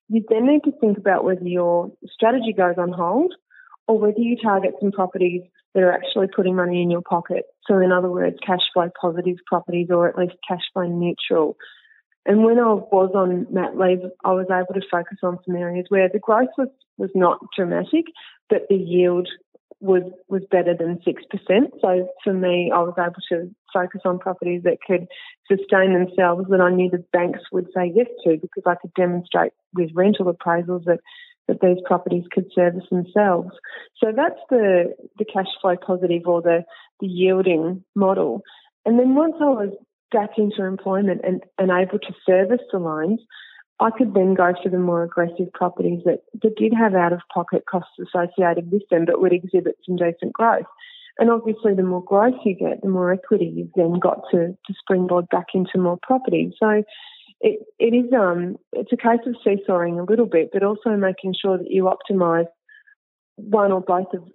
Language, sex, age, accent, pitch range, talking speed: English, female, 20-39, Australian, 180-215 Hz, 185 wpm